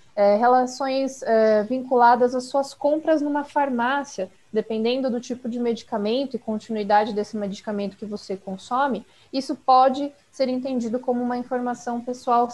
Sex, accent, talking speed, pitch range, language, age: female, Brazilian, 130 wpm, 220-265 Hz, Portuguese, 20-39